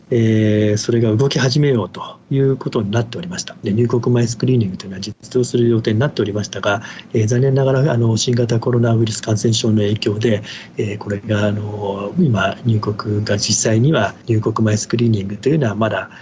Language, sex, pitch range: Japanese, male, 110-135 Hz